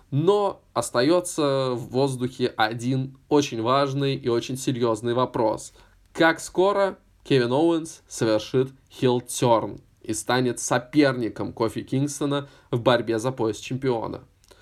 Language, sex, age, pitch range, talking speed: Russian, male, 20-39, 115-150 Hz, 110 wpm